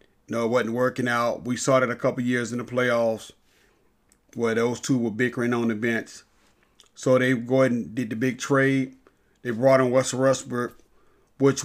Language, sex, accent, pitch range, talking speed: English, male, American, 120-135 Hz, 190 wpm